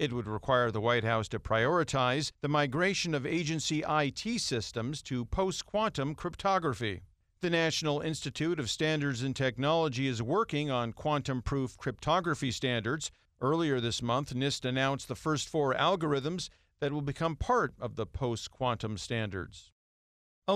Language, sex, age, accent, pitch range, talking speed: English, male, 50-69, American, 130-165 Hz, 140 wpm